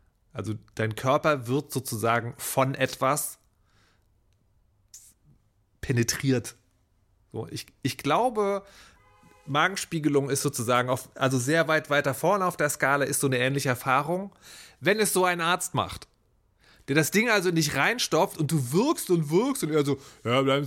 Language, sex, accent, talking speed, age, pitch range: English, male, German, 150 wpm, 30-49, 115-160 Hz